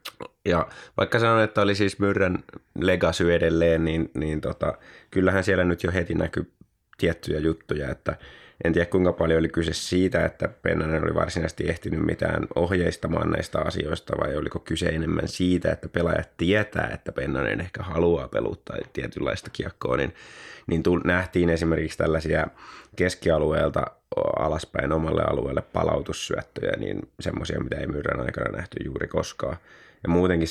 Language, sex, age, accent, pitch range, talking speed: Finnish, male, 20-39, native, 80-95 Hz, 145 wpm